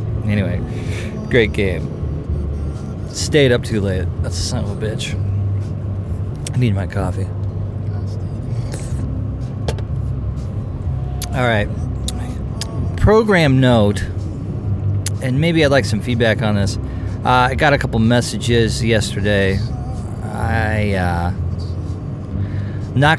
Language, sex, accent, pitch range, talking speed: English, male, American, 100-115 Hz, 100 wpm